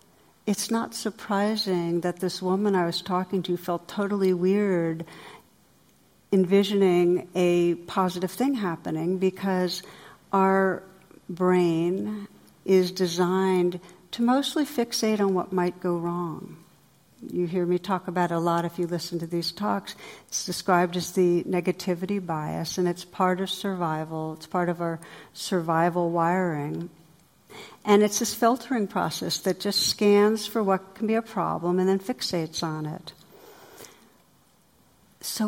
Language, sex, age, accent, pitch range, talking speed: English, female, 60-79, American, 175-200 Hz, 140 wpm